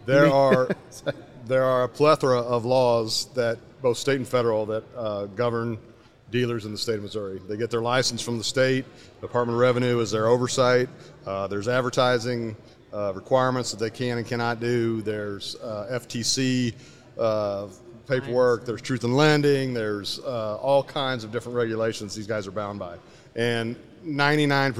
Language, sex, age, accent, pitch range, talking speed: English, male, 40-59, American, 110-130 Hz, 165 wpm